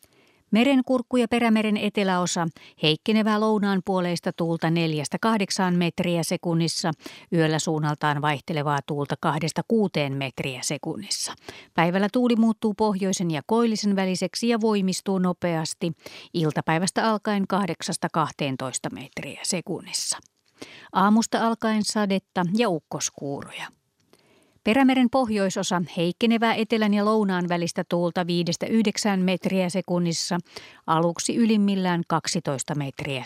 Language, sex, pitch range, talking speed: Finnish, female, 165-210 Hz, 95 wpm